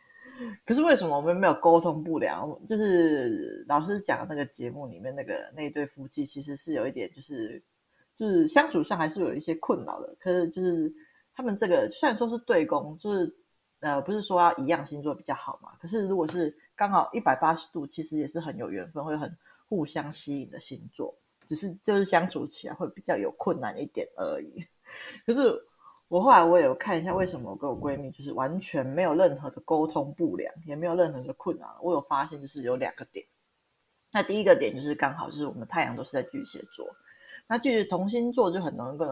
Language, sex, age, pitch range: Chinese, female, 30-49, 150-235 Hz